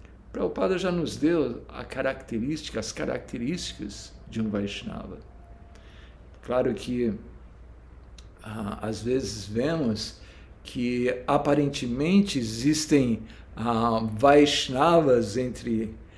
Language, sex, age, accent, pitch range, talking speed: Portuguese, male, 60-79, Brazilian, 110-150 Hz, 80 wpm